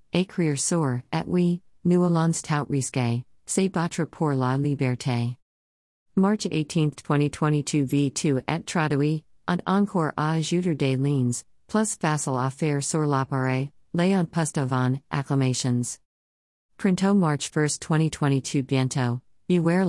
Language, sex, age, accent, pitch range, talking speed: English, female, 50-69, American, 130-165 Hz, 125 wpm